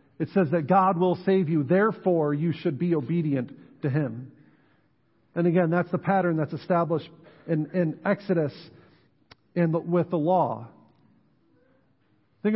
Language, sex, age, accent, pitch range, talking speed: English, male, 50-69, American, 150-195 Hz, 135 wpm